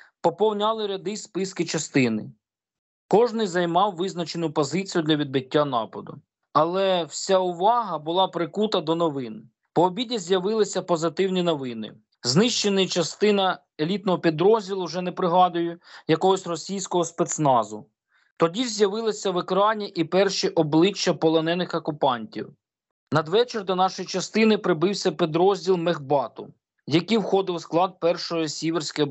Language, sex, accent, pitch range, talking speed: Russian, male, native, 150-190 Hz, 115 wpm